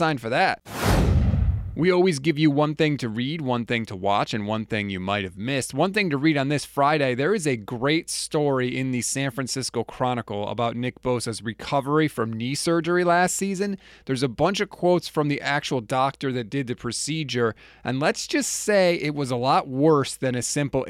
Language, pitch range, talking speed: English, 120-160 Hz, 210 wpm